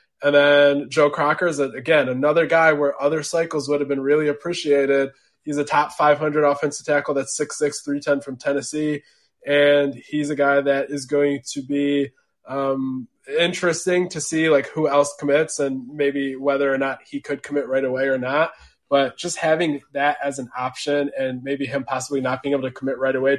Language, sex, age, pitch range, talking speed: English, male, 20-39, 135-150 Hz, 190 wpm